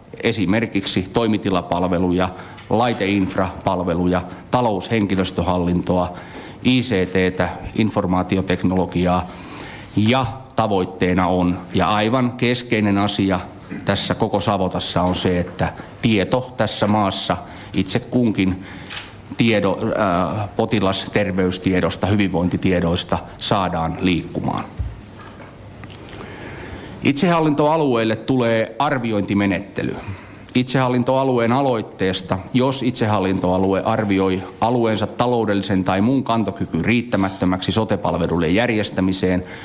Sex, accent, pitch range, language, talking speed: male, native, 90-110 Hz, Finnish, 65 wpm